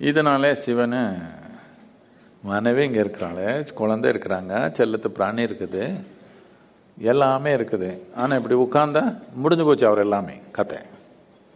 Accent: native